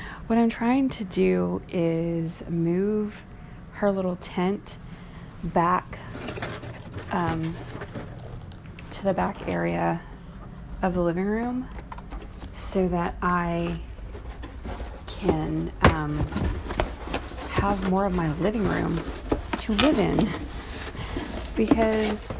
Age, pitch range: 30-49, 145-195 Hz